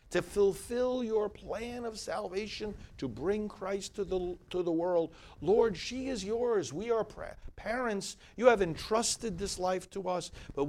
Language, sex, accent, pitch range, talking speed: English, male, American, 120-185 Hz, 170 wpm